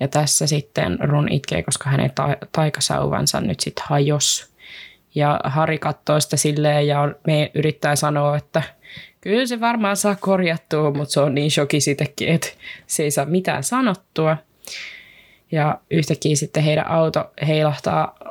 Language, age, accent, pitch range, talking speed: Finnish, 20-39, native, 150-165 Hz, 150 wpm